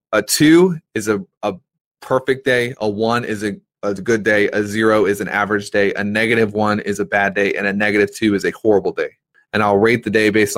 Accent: American